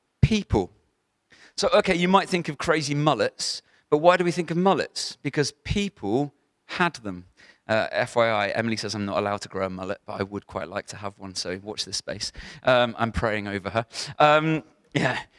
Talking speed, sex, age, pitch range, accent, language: 195 wpm, male, 40-59, 125-180 Hz, British, English